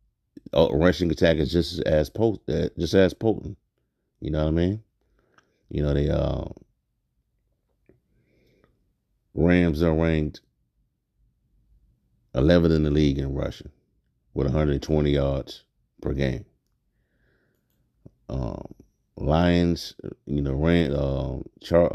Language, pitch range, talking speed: English, 70-90 Hz, 115 wpm